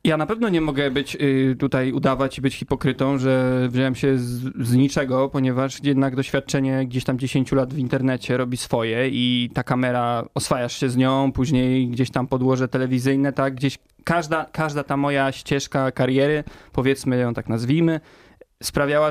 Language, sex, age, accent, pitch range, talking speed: Polish, male, 20-39, native, 130-155 Hz, 165 wpm